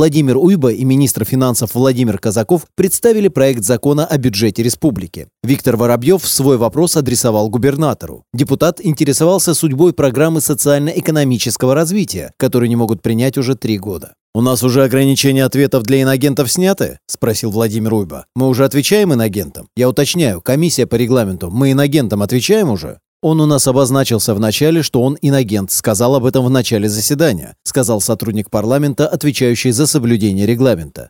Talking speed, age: 150 wpm, 30-49